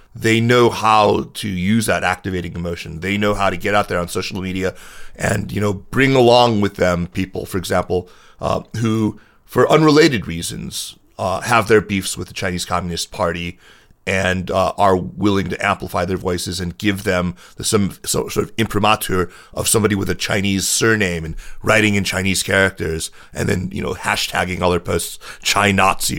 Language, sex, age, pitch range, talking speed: English, male, 30-49, 90-110 Hz, 180 wpm